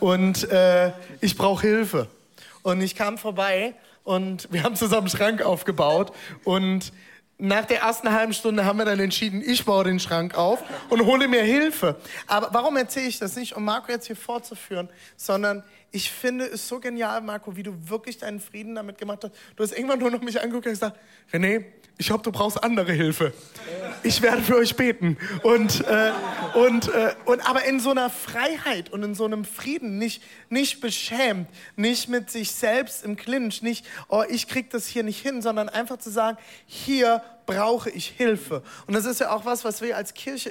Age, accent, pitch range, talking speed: 20-39, German, 200-240 Hz, 195 wpm